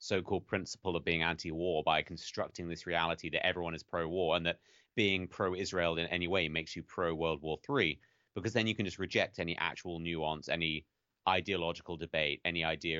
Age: 30-49